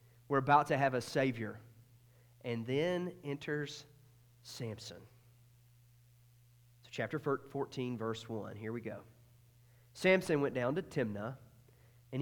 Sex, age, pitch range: male, 40-59, 120-145 Hz